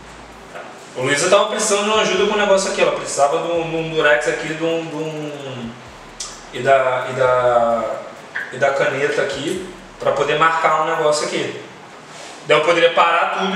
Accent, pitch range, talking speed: Brazilian, 155-190 Hz, 170 wpm